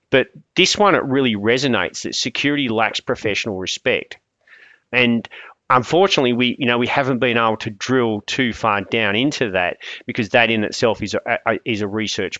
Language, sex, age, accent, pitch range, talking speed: English, male, 30-49, Australian, 110-125 Hz, 180 wpm